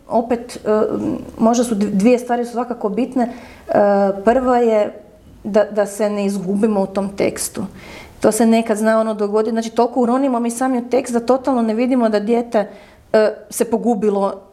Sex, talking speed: female, 170 wpm